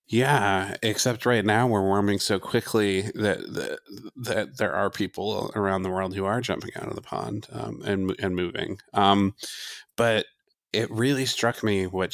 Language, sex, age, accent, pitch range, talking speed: English, male, 30-49, American, 95-110 Hz, 175 wpm